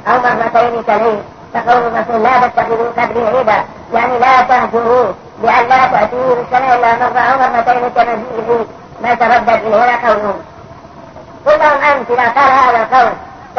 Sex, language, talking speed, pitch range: male, Arabic, 115 wpm, 235-265 Hz